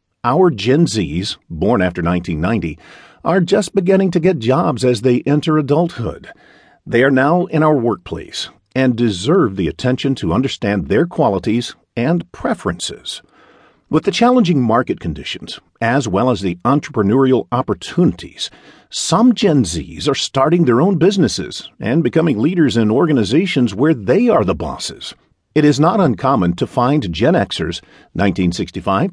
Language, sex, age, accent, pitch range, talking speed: English, male, 50-69, American, 100-165 Hz, 145 wpm